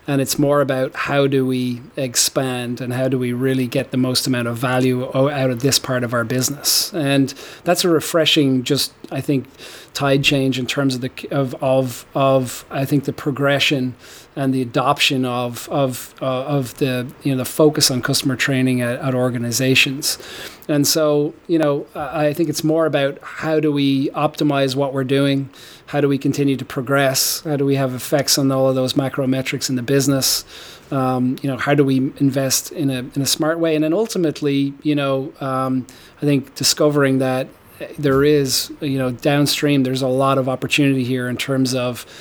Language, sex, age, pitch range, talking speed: English, male, 40-59, 130-145 Hz, 195 wpm